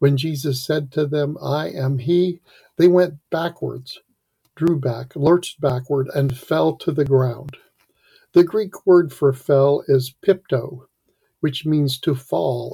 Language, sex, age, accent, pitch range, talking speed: English, male, 50-69, American, 135-165 Hz, 145 wpm